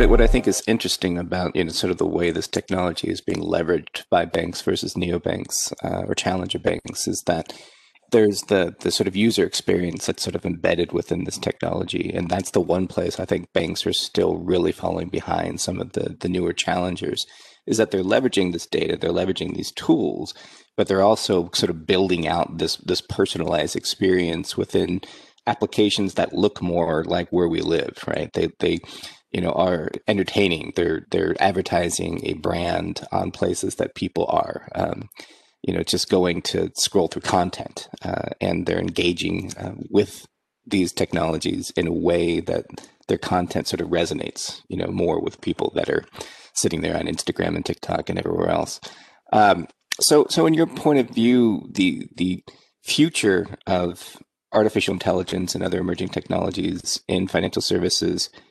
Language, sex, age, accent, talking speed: English, male, 30-49, American, 175 wpm